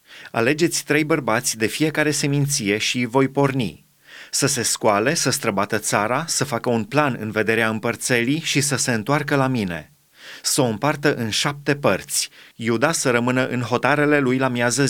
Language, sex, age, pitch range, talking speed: Romanian, male, 30-49, 120-145 Hz, 170 wpm